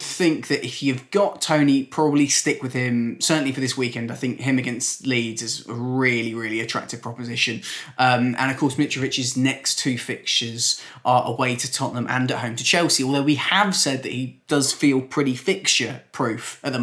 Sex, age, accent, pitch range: male, 20-39, British, 120-145 Hz